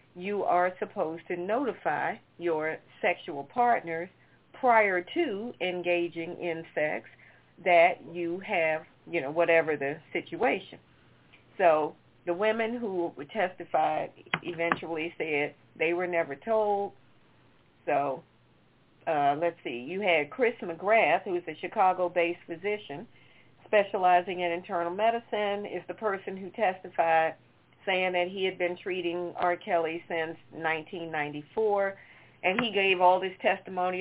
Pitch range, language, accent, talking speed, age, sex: 165-190 Hz, English, American, 125 wpm, 50-69, female